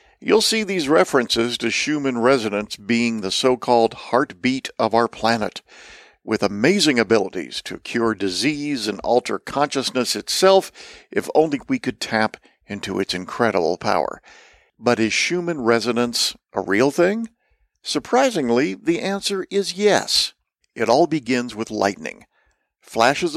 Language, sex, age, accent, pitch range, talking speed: English, male, 50-69, American, 115-160 Hz, 130 wpm